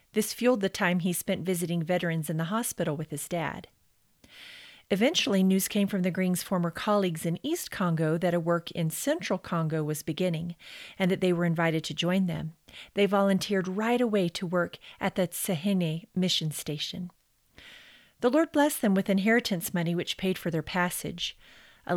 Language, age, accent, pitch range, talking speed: English, 40-59, American, 170-205 Hz, 180 wpm